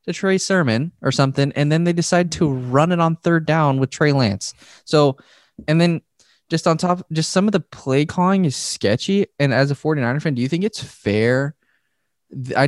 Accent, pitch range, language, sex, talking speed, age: American, 115-155 Hz, English, male, 205 wpm, 20-39